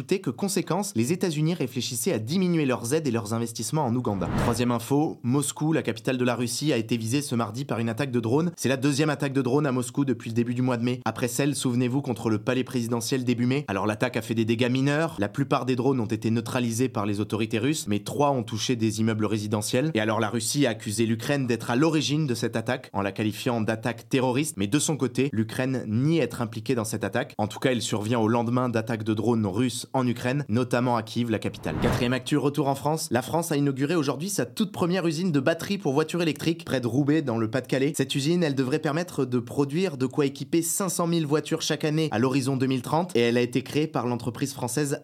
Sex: male